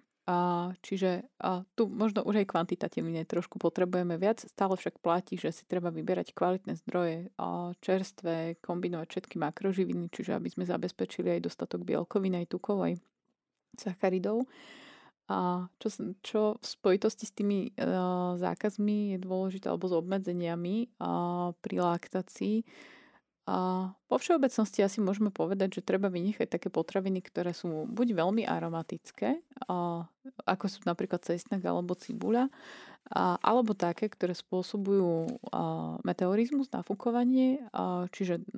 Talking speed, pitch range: 125 wpm, 175-220 Hz